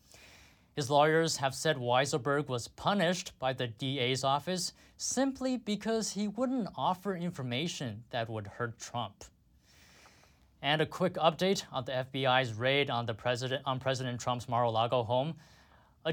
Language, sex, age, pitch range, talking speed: English, male, 20-39, 115-155 Hz, 140 wpm